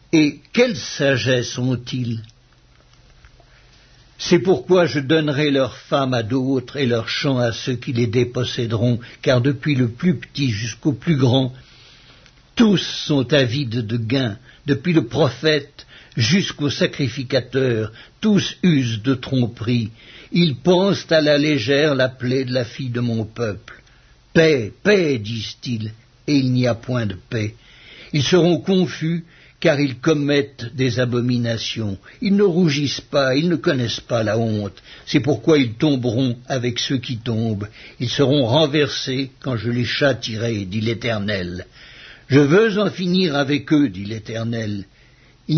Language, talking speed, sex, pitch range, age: English, 145 wpm, male, 120-150 Hz, 60-79